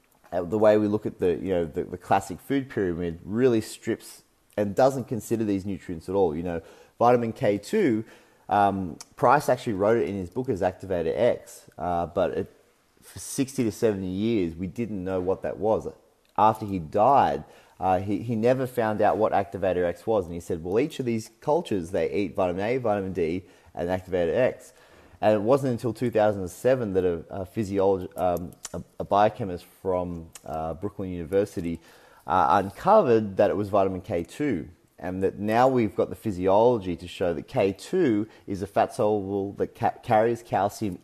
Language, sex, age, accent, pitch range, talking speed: English, male, 30-49, Australian, 90-110 Hz, 180 wpm